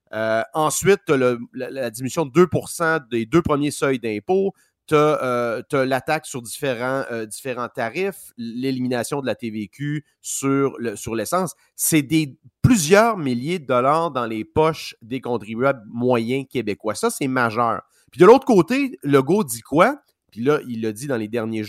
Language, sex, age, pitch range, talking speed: French, male, 30-49, 120-160 Hz, 170 wpm